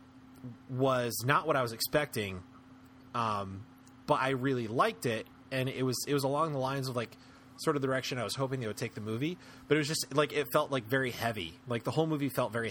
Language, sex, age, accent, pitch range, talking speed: English, male, 30-49, American, 115-135 Hz, 235 wpm